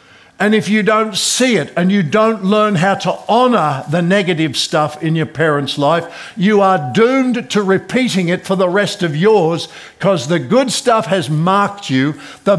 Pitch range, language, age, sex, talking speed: 165-220 Hz, English, 60-79, male, 185 wpm